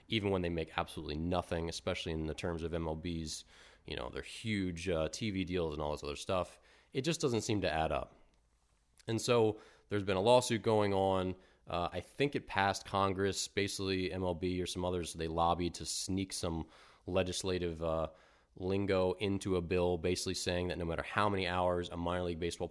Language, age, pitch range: English, 30-49, 85-105 Hz